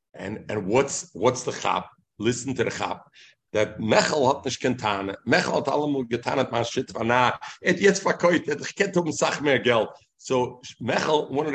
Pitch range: 125-155 Hz